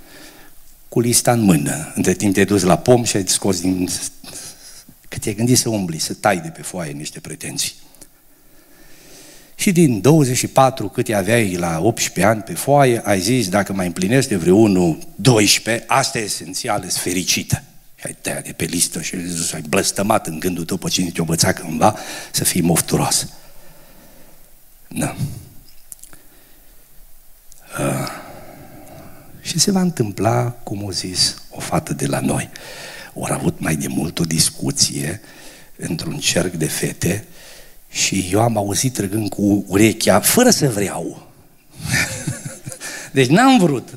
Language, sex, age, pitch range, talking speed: Romanian, male, 60-79, 95-135 Hz, 145 wpm